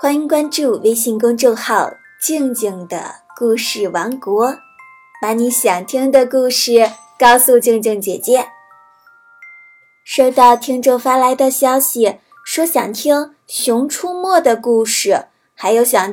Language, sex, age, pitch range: Chinese, female, 20-39, 225-270 Hz